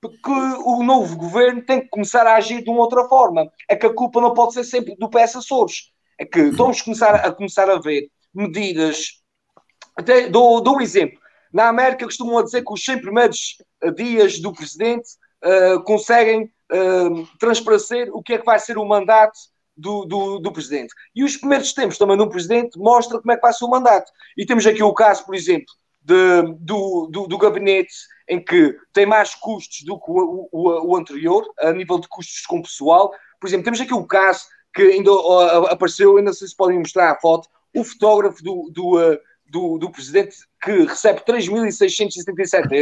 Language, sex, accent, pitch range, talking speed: Portuguese, male, Portuguese, 190-240 Hz, 195 wpm